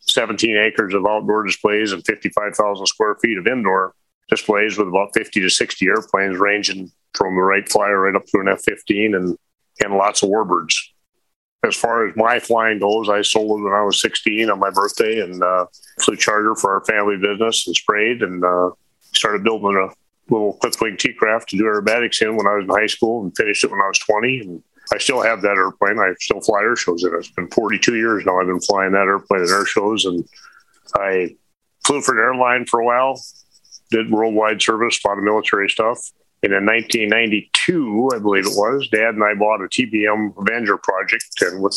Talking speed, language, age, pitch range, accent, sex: 210 wpm, English, 40-59, 95-110 Hz, American, male